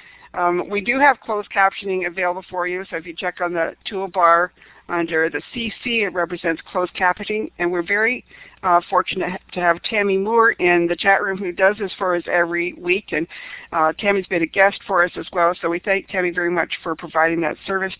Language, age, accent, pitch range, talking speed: English, 60-79, American, 170-195 Hz, 210 wpm